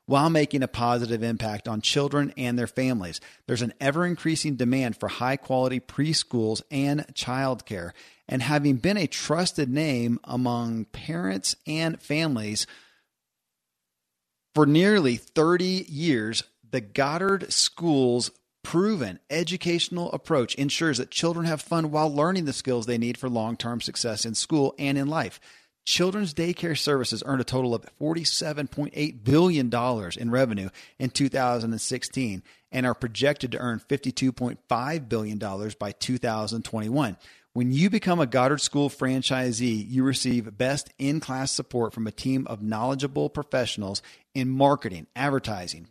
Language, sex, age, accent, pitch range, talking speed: English, male, 40-59, American, 115-145 Hz, 130 wpm